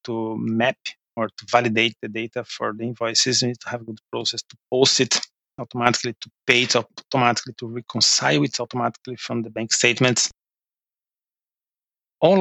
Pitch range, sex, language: 110-125 Hz, male, English